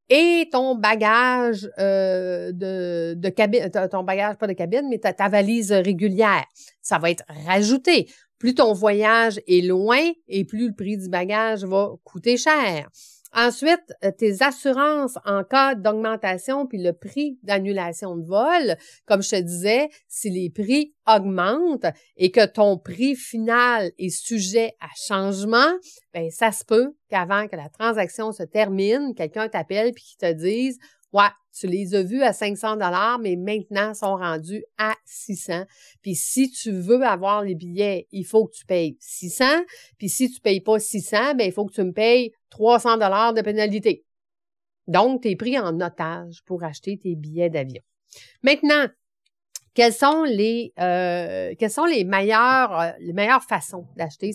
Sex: female